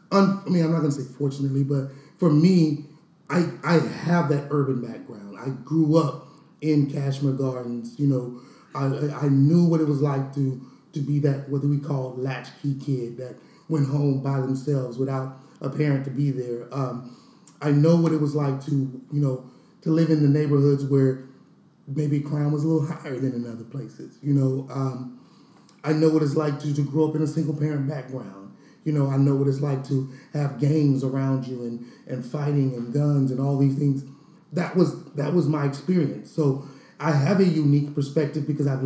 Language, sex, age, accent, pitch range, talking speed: English, male, 30-49, American, 135-160 Hz, 200 wpm